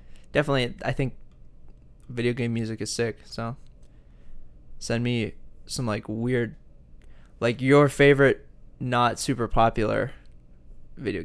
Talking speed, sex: 110 wpm, male